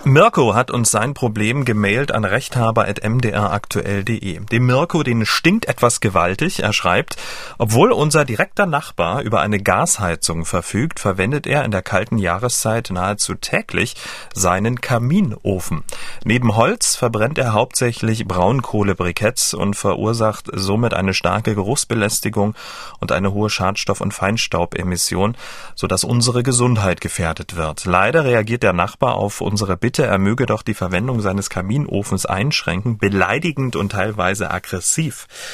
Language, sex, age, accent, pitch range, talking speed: German, male, 40-59, German, 95-120 Hz, 130 wpm